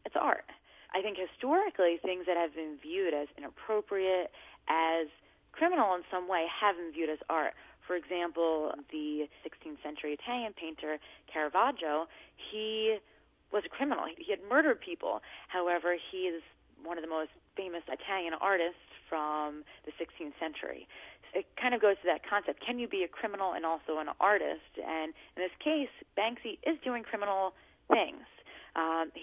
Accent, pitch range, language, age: American, 165-215 Hz, English, 30-49